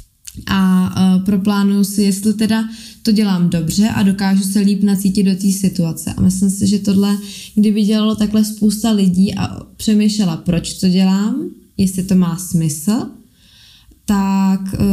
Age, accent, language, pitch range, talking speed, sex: 20-39, native, Czech, 185-210 Hz, 145 wpm, female